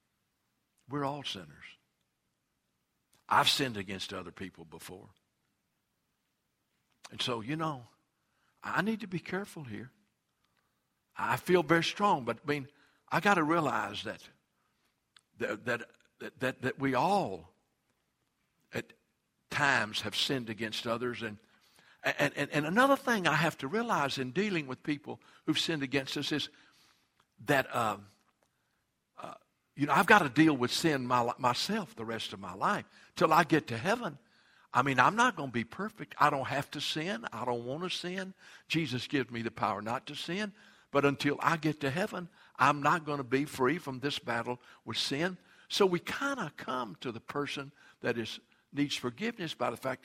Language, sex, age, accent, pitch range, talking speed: English, male, 60-79, American, 125-165 Hz, 170 wpm